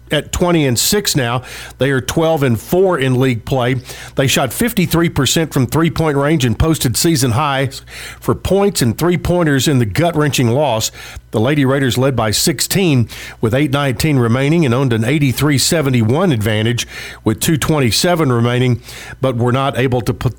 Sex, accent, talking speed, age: male, American, 170 wpm, 50-69